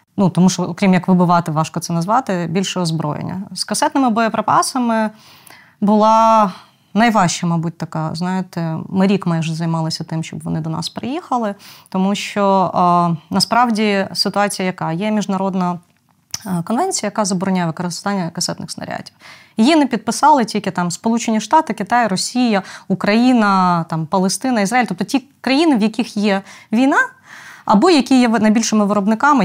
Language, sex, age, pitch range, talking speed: Ukrainian, female, 20-39, 180-235 Hz, 140 wpm